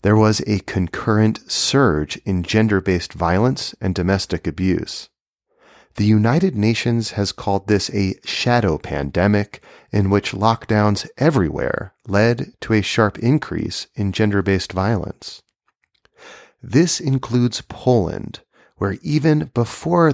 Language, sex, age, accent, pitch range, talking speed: English, male, 30-49, American, 90-120 Hz, 115 wpm